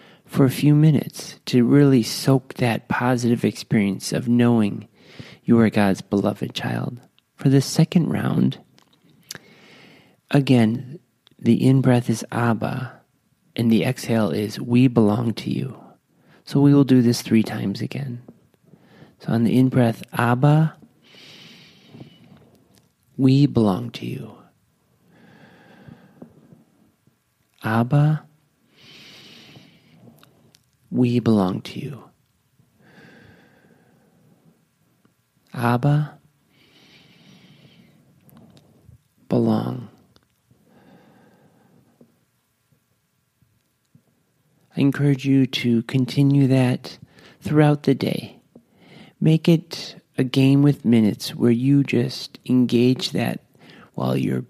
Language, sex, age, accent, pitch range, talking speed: English, male, 40-59, American, 115-140 Hz, 90 wpm